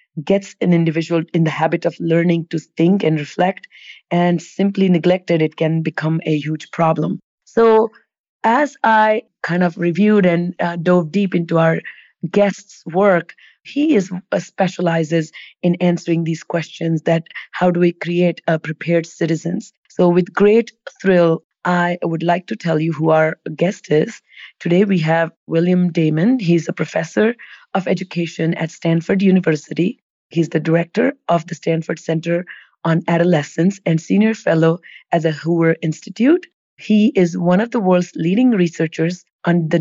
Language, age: English, 30-49